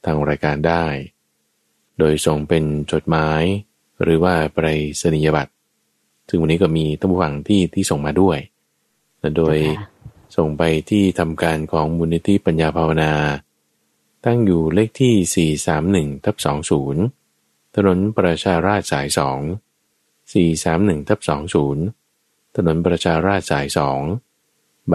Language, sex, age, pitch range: Thai, male, 20-39, 75-95 Hz